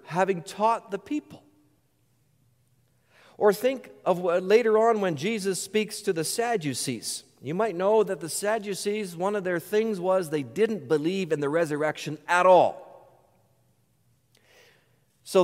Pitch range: 130-205 Hz